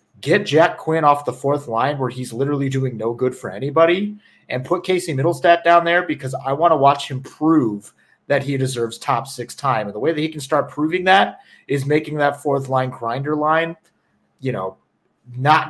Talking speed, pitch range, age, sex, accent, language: 205 wpm, 125-155 Hz, 30-49, male, American, English